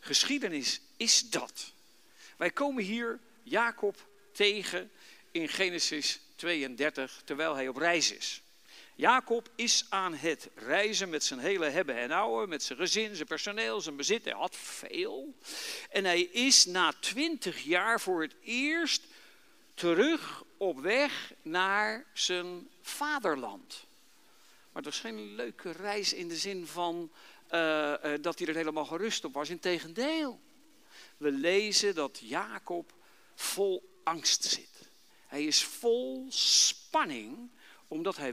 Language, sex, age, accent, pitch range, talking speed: Dutch, male, 60-79, Dutch, 170-280 Hz, 135 wpm